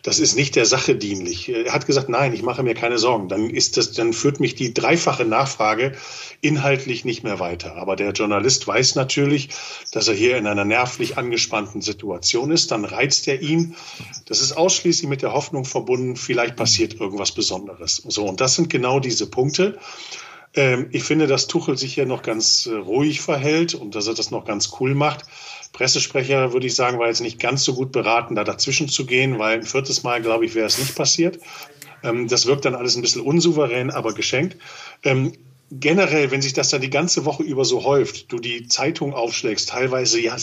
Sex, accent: male, German